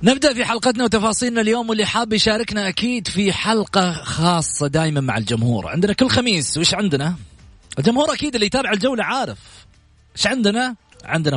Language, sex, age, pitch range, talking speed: Arabic, male, 30-49, 135-225 Hz, 155 wpm